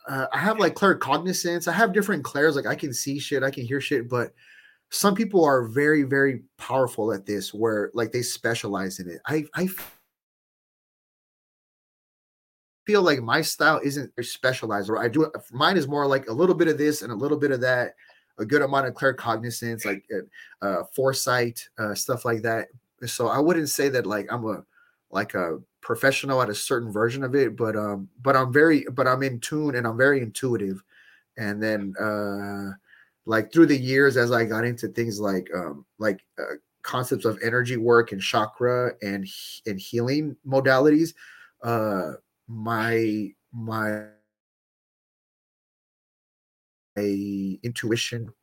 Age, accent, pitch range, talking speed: 30-49, American, 110-140 Hz, 165 wpm